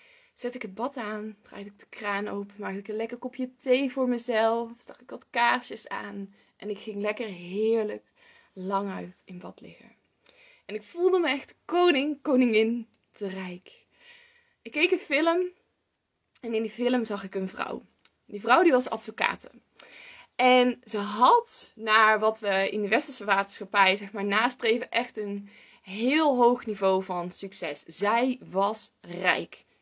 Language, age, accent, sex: Dutch, 20-39, Dutch, female